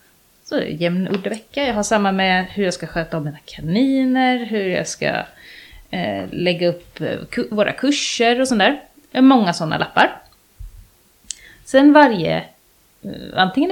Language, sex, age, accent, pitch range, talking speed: Swedish, female, 30-49, native, 170-255 Hz, 135 wpm